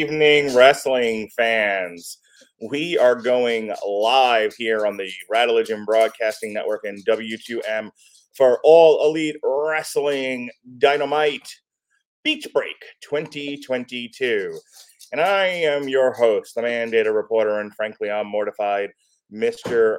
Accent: American